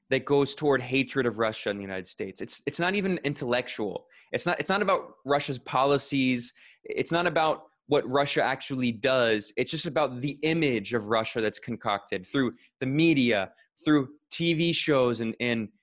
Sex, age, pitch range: male, 20-39, 120-155 Hz